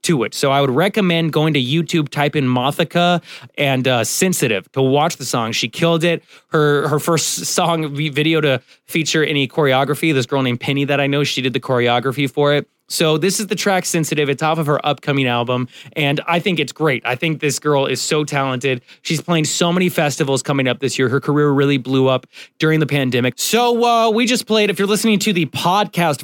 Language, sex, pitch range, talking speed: English, male, 130-160 Hz, 220 wpm